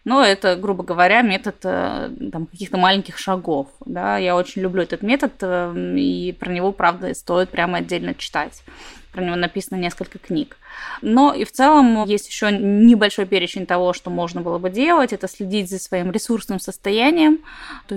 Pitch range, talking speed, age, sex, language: 190-230 Hz, 155 wpm, 20-39, female, Russian